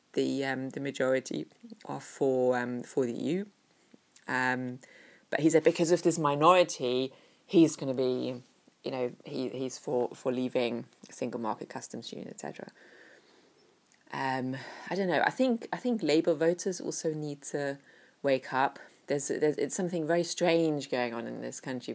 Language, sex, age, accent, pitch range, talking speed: English, female, 20-39, British, 130-175 Hz, 165 wpm